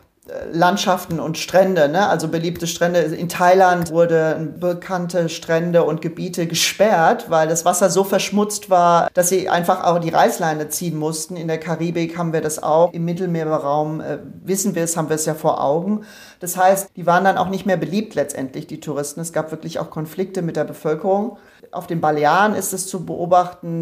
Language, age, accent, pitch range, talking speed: German, 40-59, German, 155-185 Hz, 190 wpm